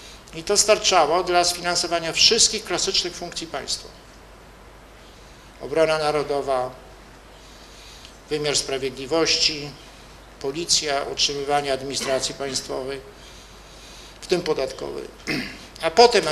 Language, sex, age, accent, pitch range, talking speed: Polish, male, 50-69, native, 140-180 Hz, 80 wpm